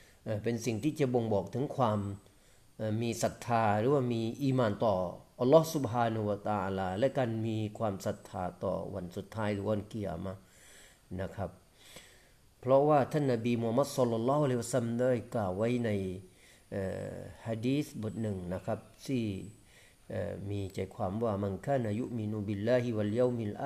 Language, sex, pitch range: Thai, male, 105-135 Hz